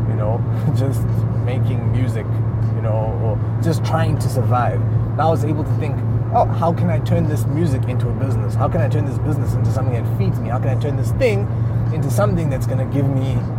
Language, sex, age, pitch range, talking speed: English, male, 20-39, 115-125 Hz, 230 wpm